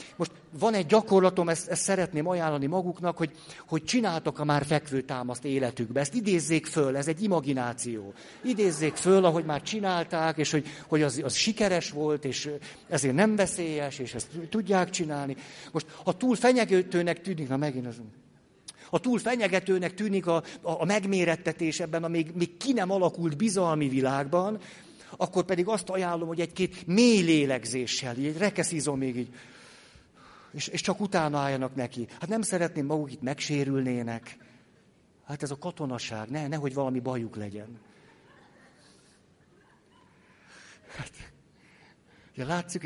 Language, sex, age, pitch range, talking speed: Hungarian, male, 50-69, 140-185 Hz, 140 wpm